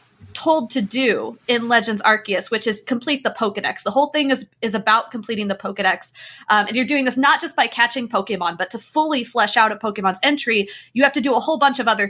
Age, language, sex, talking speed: 20-39, English, female, 235 wpm